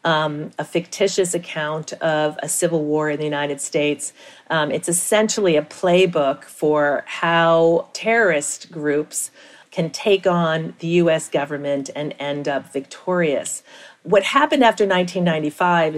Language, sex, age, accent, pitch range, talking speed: English, female, 40-59, American, 150-195 Hz, 130 wpm